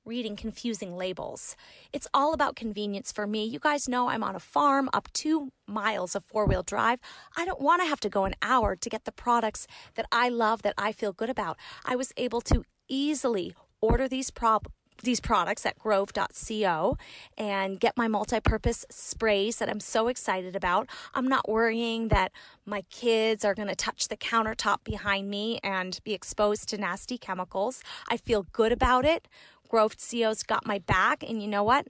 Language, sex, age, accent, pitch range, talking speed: English, female, 30-49, American, 205-255 Hz, 185 wpm